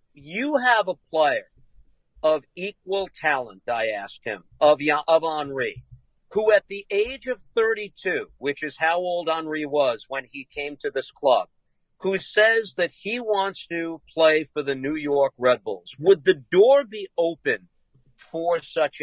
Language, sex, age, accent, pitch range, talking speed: English, male, 50-69, American, 140-180 Hz, 160 wpm